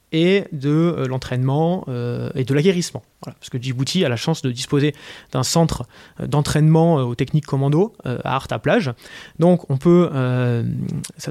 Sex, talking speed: male, 185 wpm